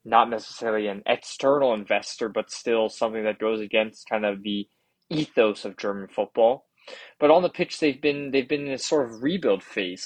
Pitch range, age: 105-125 Hz, 20-39